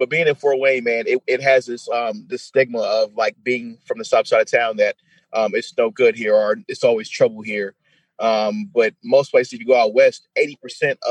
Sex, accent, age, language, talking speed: male, American, 30-49, English, 230 wpm